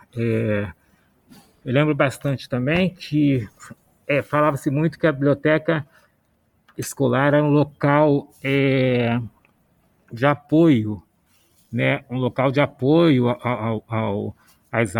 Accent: Brazilian